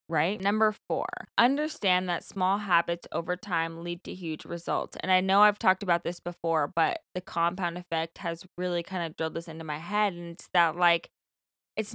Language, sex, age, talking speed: English, female, 20-39, 195 wpm